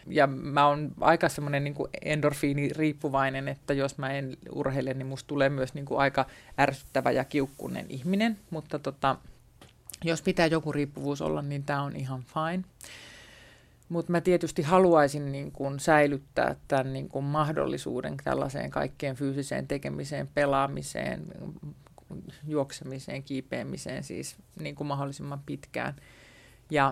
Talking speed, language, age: 130 wpm, Finnish, 30-49